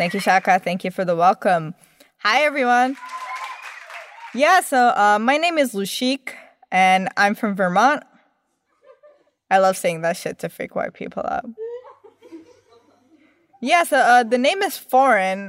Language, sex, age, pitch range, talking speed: English, female, 20-39, 185-260 Hz, 145 wpm